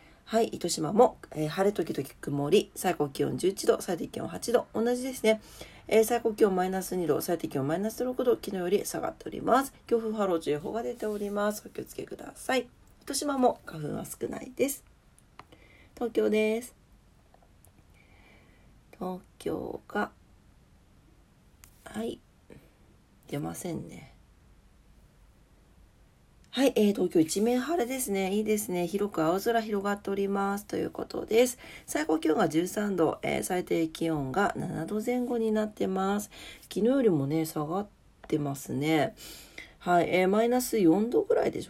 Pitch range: 170-240 Hz